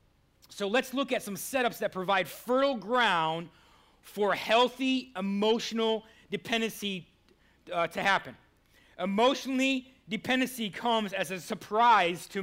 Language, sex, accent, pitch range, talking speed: English, male, American, 180-230 Hz, 115 wpm